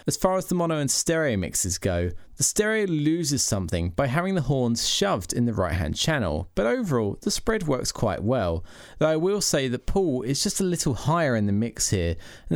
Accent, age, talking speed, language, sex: British, 20-39, 215 wpm, English, male